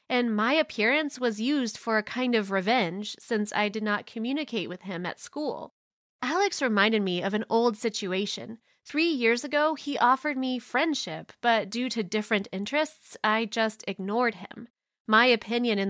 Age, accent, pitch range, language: 20-39, American, 215-295 Hz, English